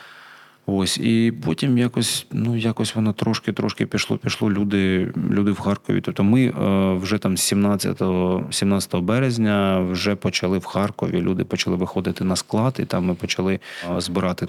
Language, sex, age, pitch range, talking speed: Ukrainian, male, 30-49, 90-115 Hz, 140 wpm